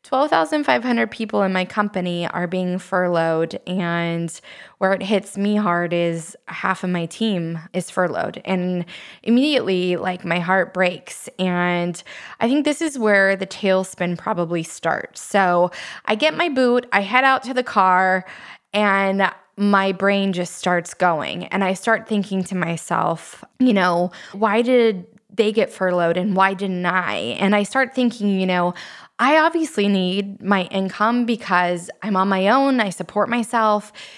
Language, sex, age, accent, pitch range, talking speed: English, female, 20-39, American, 185-245 Hz, 160 wpm